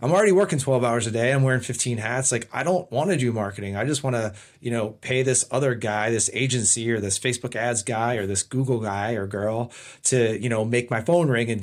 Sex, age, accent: male, 30-49, American